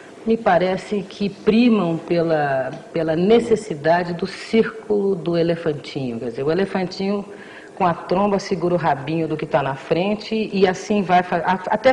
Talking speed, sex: 150 wpm, female